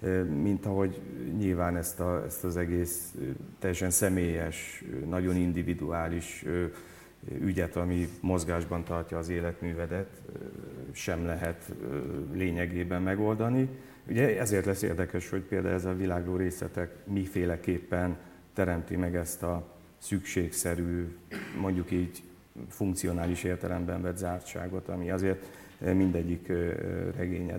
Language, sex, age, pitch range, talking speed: Hungarian, male, 50-69, 85-95 Hz, 105 wpm